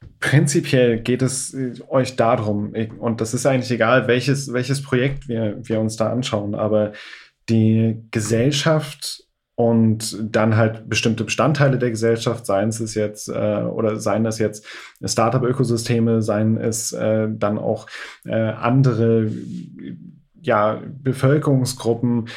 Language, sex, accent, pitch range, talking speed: German, male, German, 115-135 Hz, 130 wpm